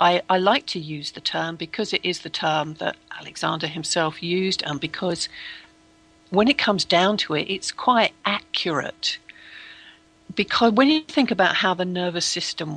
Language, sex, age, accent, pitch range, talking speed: English, female, 50-69, British, 165-220 Hz, 170 wpm